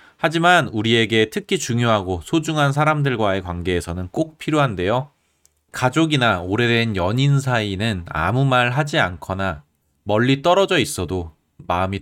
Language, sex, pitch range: Korean, male, 90-140 Hz